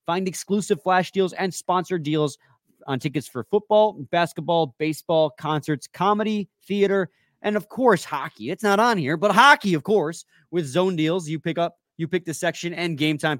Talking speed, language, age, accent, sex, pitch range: 180 wpm, English, 30-49, American, male, 115-165 Hz